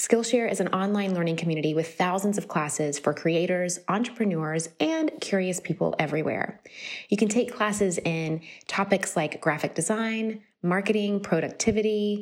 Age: 20-39